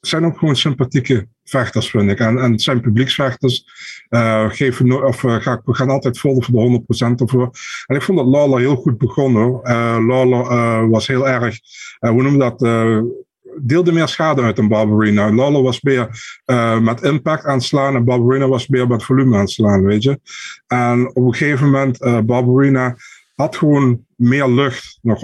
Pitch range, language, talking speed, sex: 115-130 Hz, Dutch, 195 wpm, male